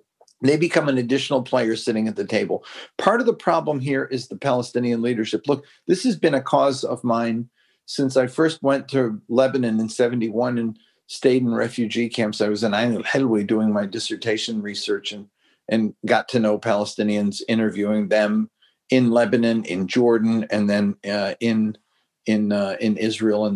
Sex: male